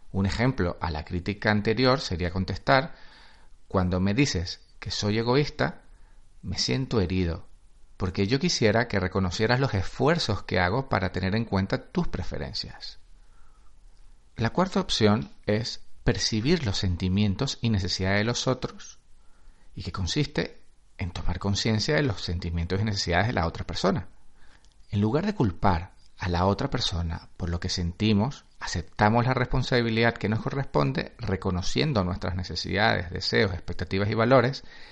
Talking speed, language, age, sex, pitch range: 145 wpm, Spanish, 40-59, male, 95-120 Hz